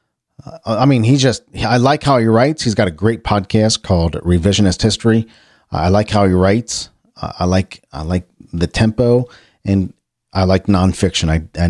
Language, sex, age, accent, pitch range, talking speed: English, male, 40-59, American, 90-125 Hz, 175 wpm